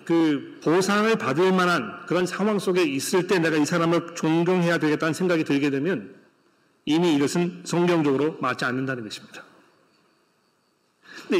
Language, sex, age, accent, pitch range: Korean, male, 40-59, native, 145-185 Hz